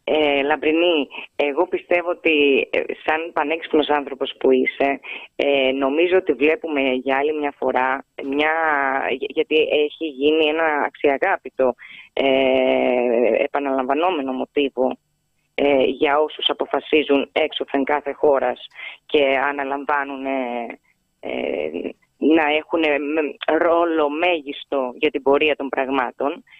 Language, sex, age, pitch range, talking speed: Greek, female, 20-39, 140-170 Hz, 110 wpm